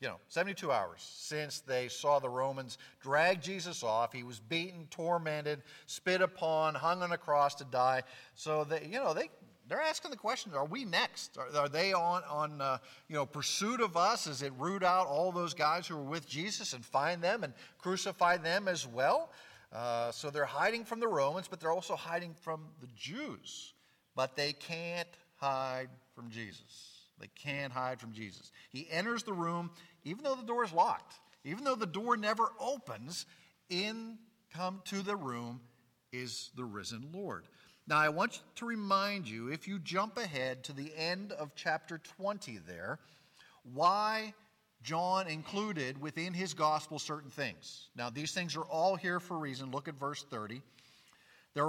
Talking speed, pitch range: 180 wpm, 140-190 Hz